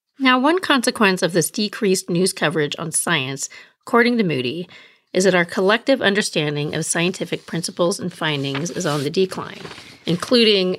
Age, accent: 40-59, American